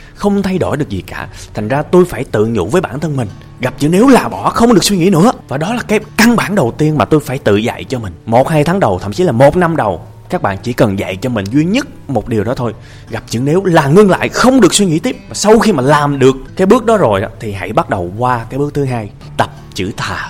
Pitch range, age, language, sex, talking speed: 105-150 Hz, 20-39, Vietnamese, male, 285 wpm